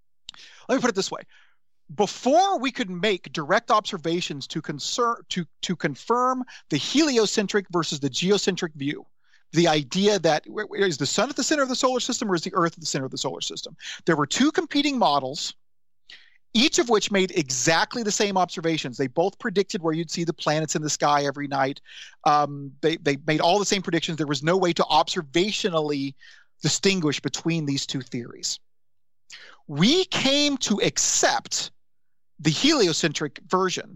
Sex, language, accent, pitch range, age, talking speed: male, English, American, 150-210 Hz, 40-59, 170 wpm